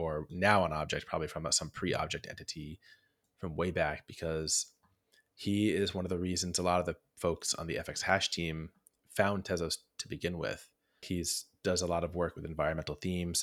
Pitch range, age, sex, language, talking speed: 80-90 Hz, 30-49, male, English, 190 wpm